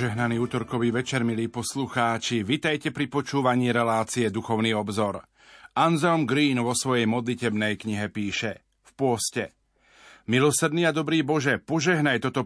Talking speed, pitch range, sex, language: 125 wpm, 120-140 Hz, male, Slovak